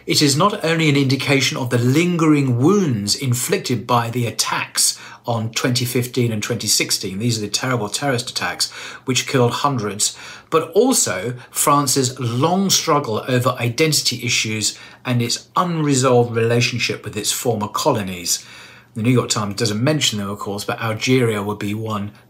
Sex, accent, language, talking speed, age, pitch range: male, British, English, 155 wpm, 40-59, 115-145 Hz